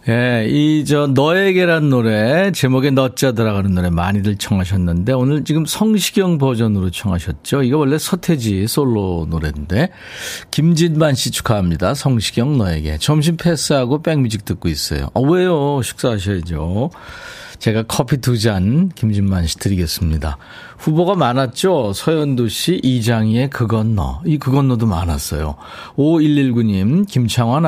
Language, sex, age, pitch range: Korean, male, 40-59, 100-145 Hz